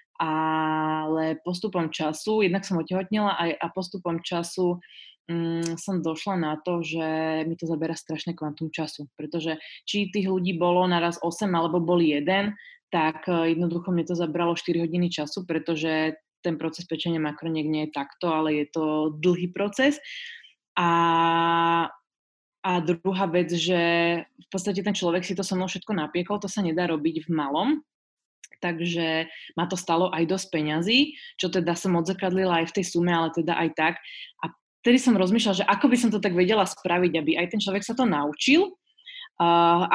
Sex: female